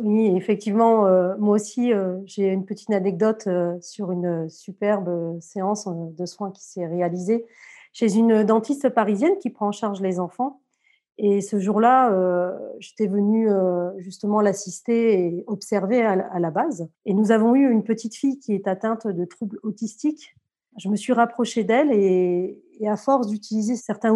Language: English